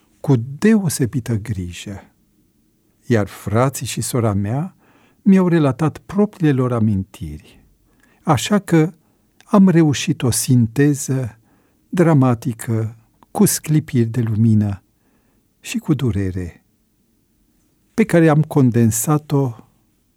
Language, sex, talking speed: Romanian, male, 90 wpm